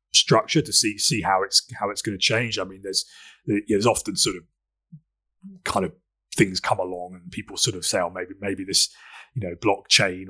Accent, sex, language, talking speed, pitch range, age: British, male, English, 205 wpm, 95-115 Hz, 30-49